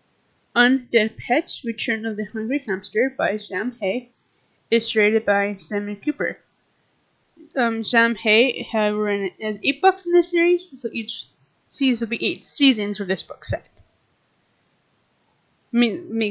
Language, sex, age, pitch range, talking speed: English, female, 20-39, 210-245 Hz, 135 wpm